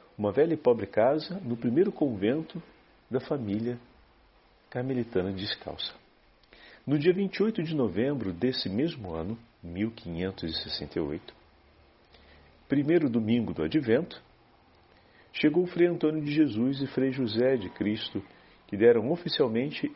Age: 50-69